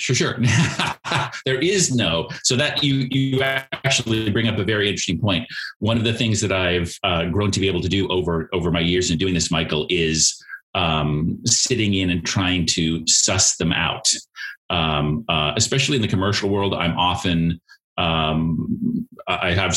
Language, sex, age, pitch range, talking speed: English, male, 30-49, 85-110 Hz, 180 wpm